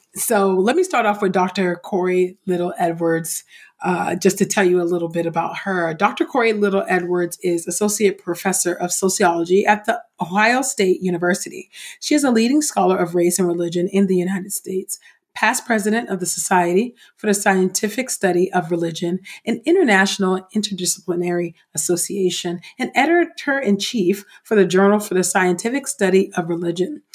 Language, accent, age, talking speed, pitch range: English, American, 40-59, 155 wpm, 175-215 Hz